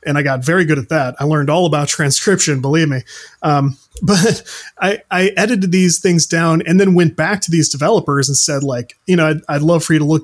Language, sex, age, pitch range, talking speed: English, male, 30-49, 150-185 Hz, 240 wpm